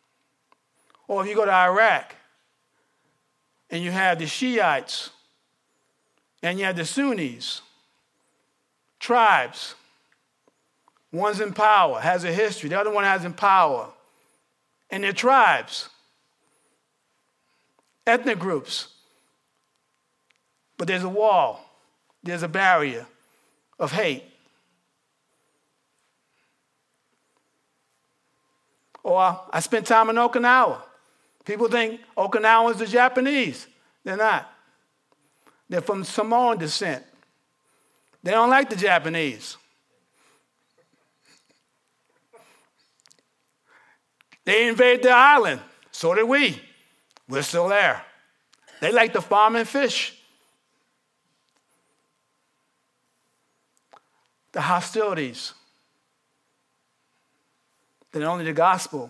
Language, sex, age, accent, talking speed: English, male, 50-69, American, 90 wpm